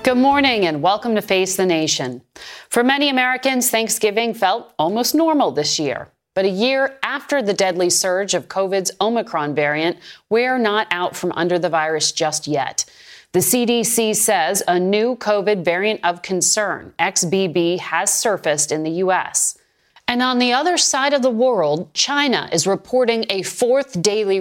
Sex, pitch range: female, 180-240 Hz